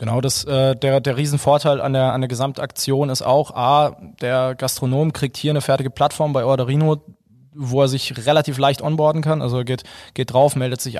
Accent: German